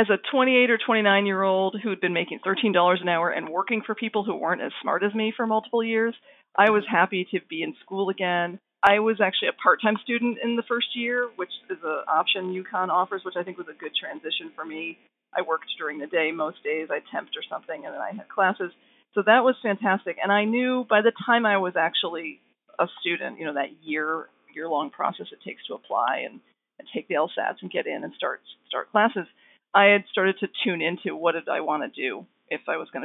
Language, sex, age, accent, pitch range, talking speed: English, female, 40-59, American, 170-220 Hz, 230 wpm